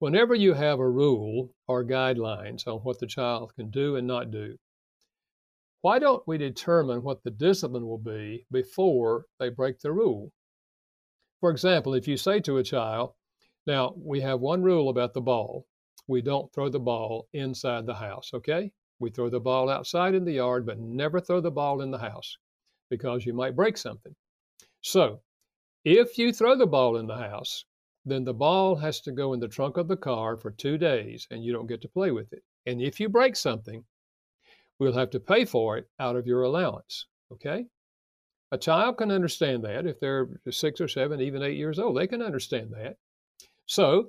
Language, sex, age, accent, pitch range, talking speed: English, male, 60-79, American, 125-175 Hz, 195 wpm